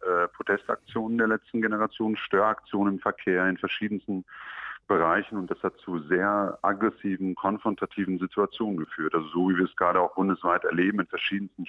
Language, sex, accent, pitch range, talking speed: German, male, German, 90-100 Hz, 155 wpm